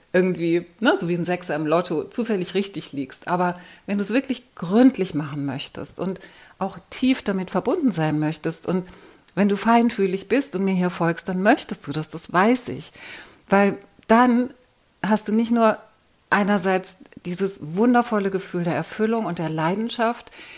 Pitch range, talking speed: 165-215 Hz, 165 wpm